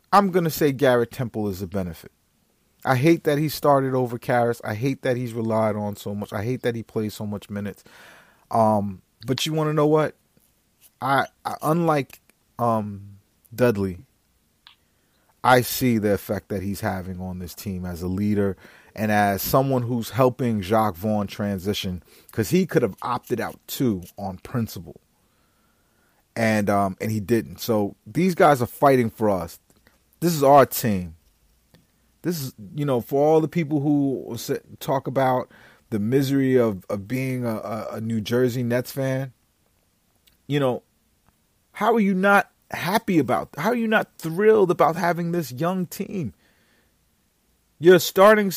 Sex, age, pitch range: male, 30-49, 100-160 Hz